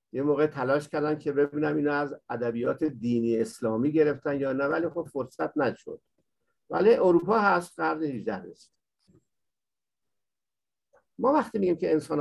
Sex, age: male, 50-69